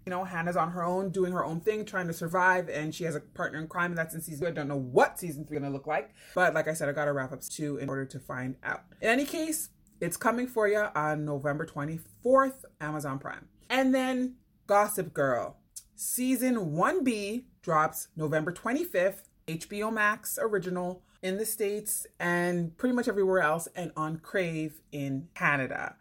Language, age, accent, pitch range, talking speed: English, 30-49, American, 155-200 Hz, 195 wpm